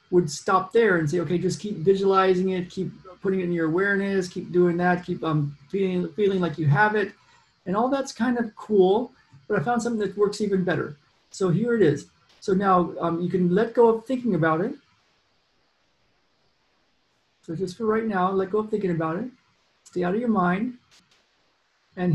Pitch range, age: 170-210 Hz, 40-59